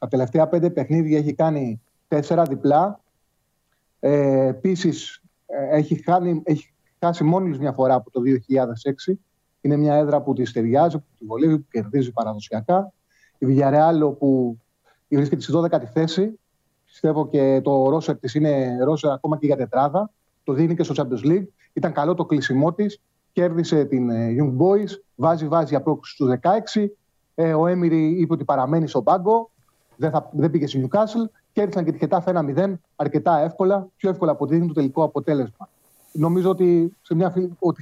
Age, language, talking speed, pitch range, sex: 30-49, Greek, 155 wpm, 145-180 Hz, male